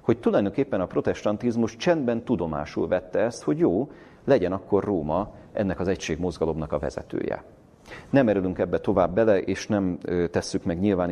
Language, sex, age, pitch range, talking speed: Hungarian, male, 40-59, 95-115 Hz, 150 wpm